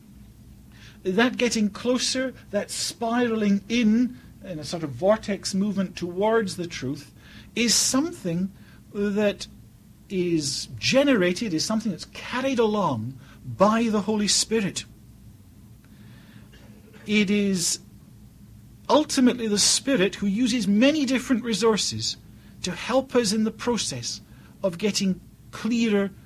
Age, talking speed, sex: 50-69, 110 wpm, male